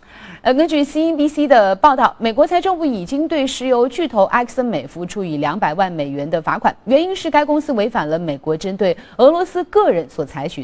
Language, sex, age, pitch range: Chinese, female, 30-49, 175-295 Hz